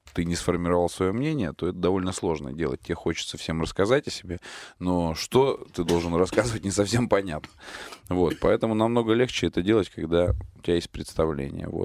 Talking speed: 170 wpm